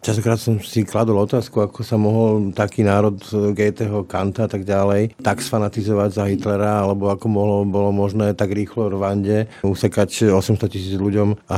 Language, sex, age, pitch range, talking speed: Slovak, male, 50-69, 100-120 Hz, 170 wpm